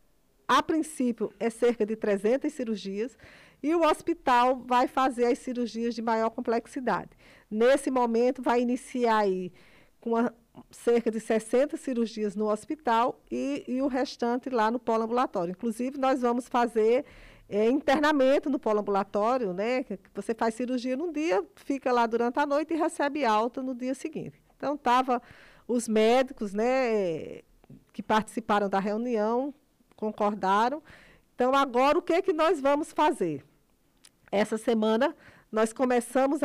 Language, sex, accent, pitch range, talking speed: Portuguese, female, Brazilian, 225-285 Hz, 140 wpm